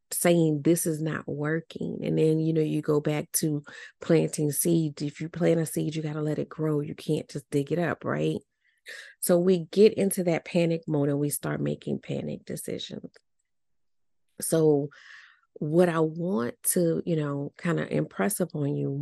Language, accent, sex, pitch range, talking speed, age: English, American, female, 150-180 Hz, 185 wpm, 30-49